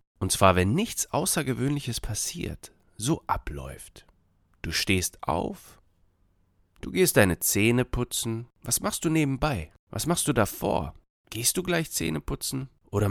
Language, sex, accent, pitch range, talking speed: German, male, German, 90-125 Hz, 135 wpm